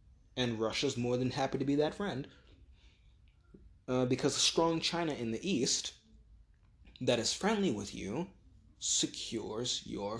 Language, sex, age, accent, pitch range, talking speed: English, male, 20-39, American, 100-145 Hz, 140 wpm